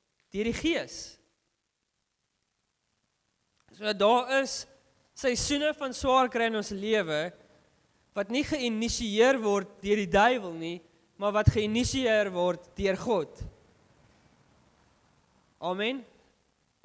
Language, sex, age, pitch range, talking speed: English, male, 20-39, 170-220 Hz, 105 wpm